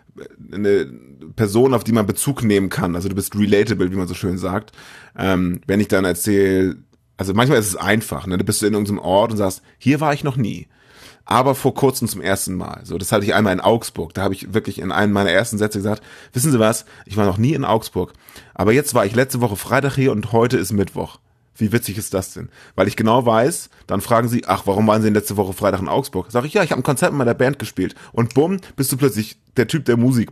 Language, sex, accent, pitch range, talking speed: German, male, German, 95-120 Hz, 250 wpm